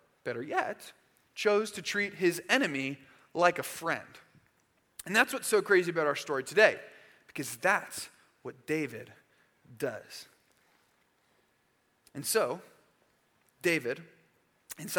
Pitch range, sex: 165-230 Hz, male